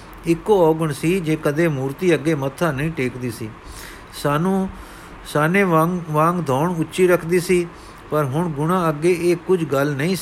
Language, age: Punjabi, 50-69